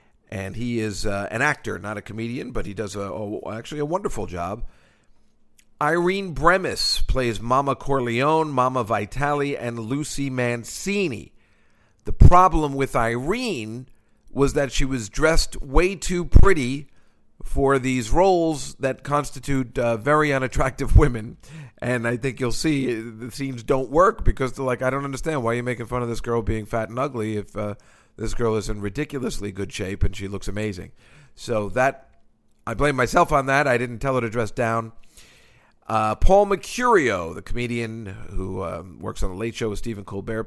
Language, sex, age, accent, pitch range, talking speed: English, male, 50-69, American, 105-140 Hz, 170 wpm